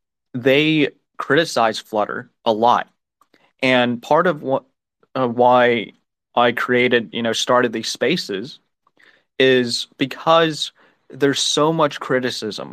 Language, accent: English, American